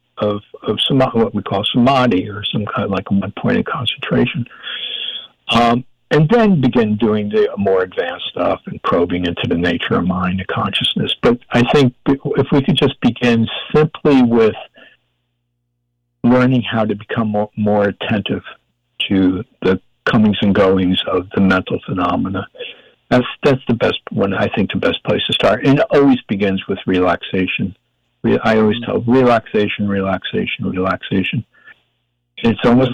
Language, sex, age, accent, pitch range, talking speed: English, male, 60-79, American, 90-120 Hz, 155 wpm